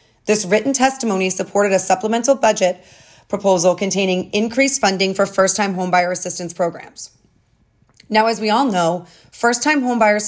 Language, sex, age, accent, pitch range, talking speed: English, female, 30-49, American, 175-220 Hz, 135 wpm